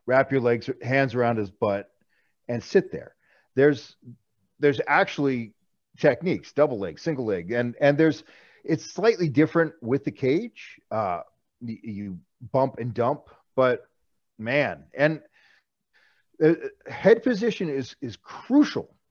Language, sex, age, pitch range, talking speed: English, male, 40-59, 110-140 Hz, 130 wpm